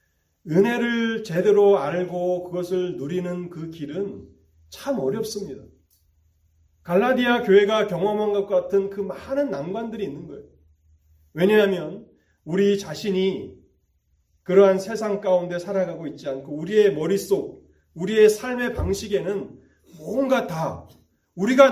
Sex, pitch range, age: male, 150-235 Hz, 30-49